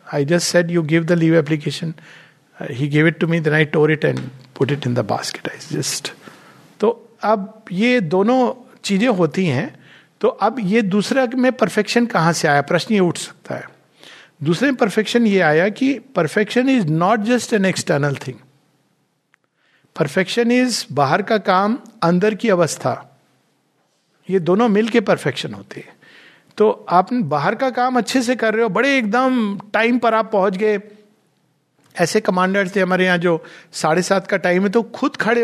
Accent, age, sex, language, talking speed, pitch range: native, 50-69, male, Hindi, 185 wpm, 165-215 Hz